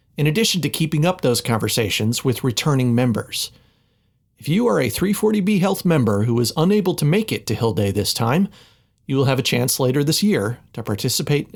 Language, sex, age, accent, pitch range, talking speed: English, male, 40-59, American, 115-155 Hz, 195 wpm